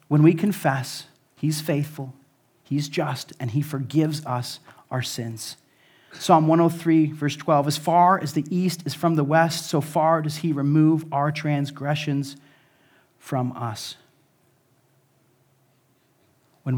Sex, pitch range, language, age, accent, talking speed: male, 130-155 Hz, English, 40-59, American, 130 wpm